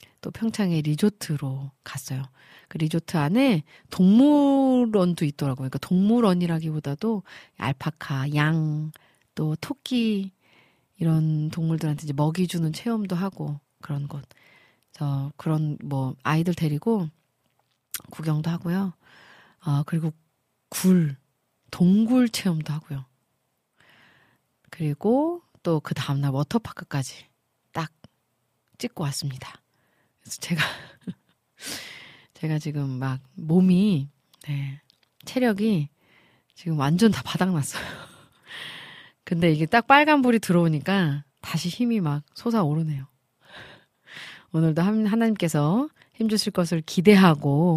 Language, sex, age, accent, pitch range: Korean, female, 30-49, native, 145-195 Hz